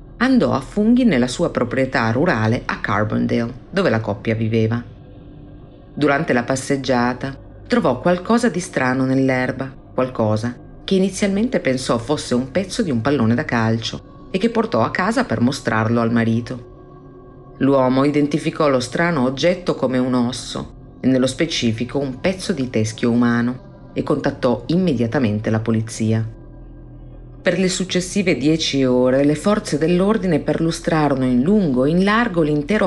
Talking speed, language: 140 wpm, Italian